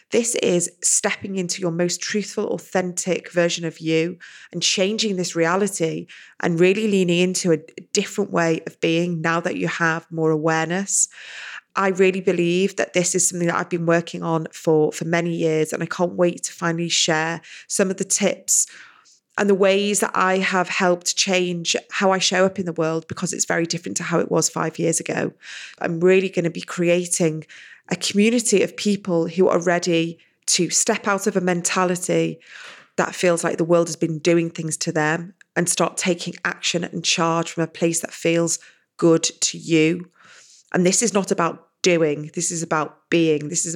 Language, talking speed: English, 190 wpm